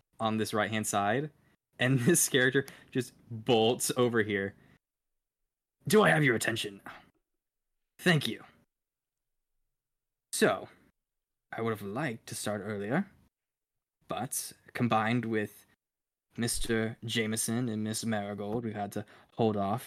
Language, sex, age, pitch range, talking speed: English, male, 10-29, 110-135 Hz, 120 wpm